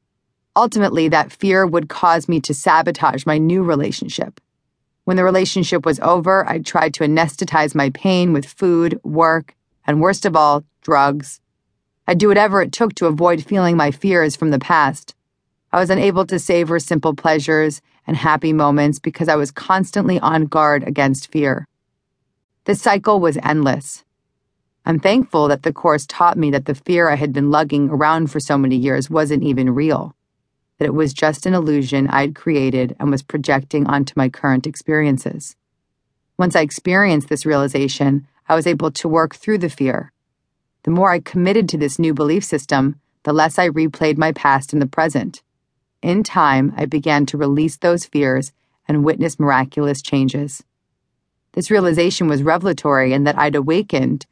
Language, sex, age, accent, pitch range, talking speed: English, female, 40-59, American, 140-170 Hz, 170 wpm